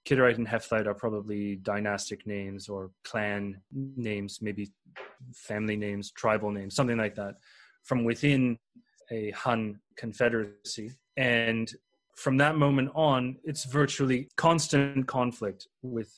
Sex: male